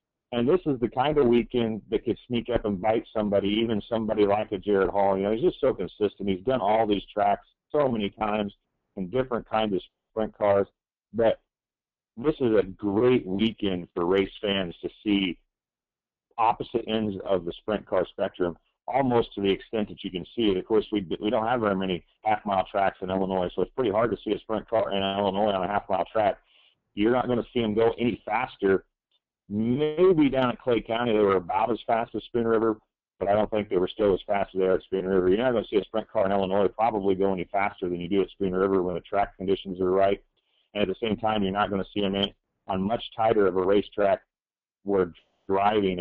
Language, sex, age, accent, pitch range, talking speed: English, male, 40-59, American, 95-110 Hz, 230 wpm